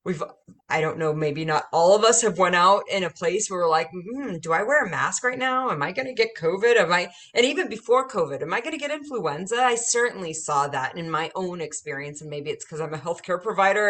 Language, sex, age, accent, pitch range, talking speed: English, female, 30-49, American, 155-235 Hz, 260 wpm